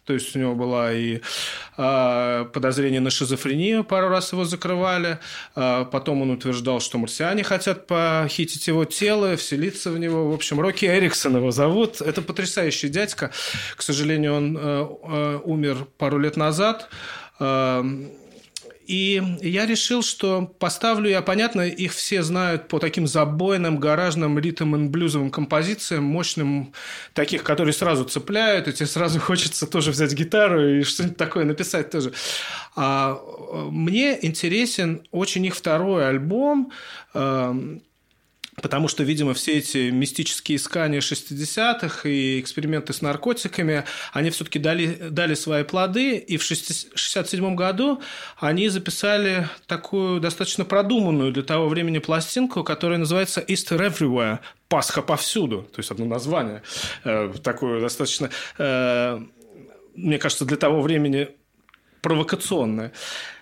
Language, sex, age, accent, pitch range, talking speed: Russian, male, 30-49, native, 145-185 Hz, 130 wpm